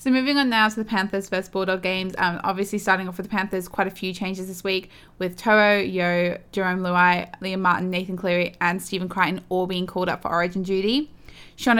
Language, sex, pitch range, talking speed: English, female, 185-210 Hz, 220 wpm